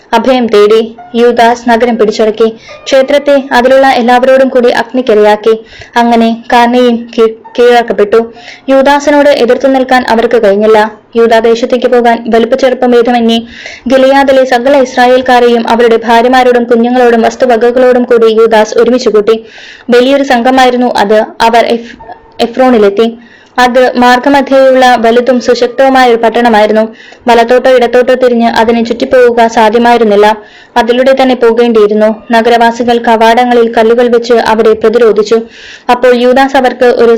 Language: Malayalam